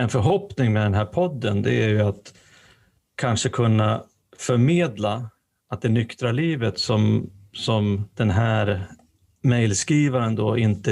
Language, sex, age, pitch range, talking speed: Swedish, male, 30-49, 105-125 Hz, 125 wpm